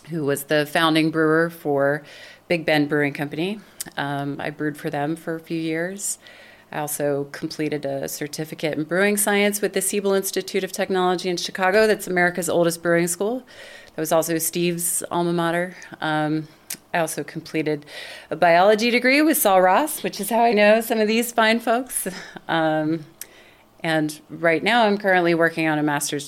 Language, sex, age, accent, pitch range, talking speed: English, female, 30-49, American, 155-185 Hz, 175 wpm